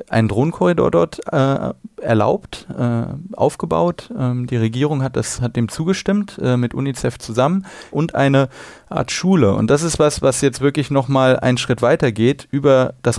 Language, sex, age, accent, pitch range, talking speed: German, male, 30-49, German, 110-135 Hz, 170 wpm